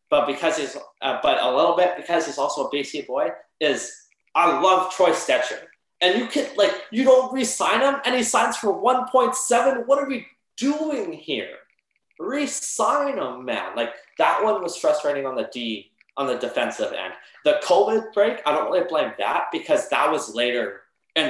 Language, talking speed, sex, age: English, 185 wpm, male, 20-39